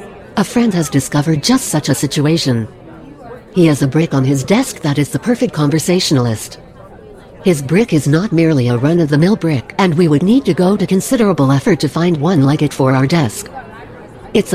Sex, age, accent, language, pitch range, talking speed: female, 60-79, American, English, 135-180 Hz, 190 wpm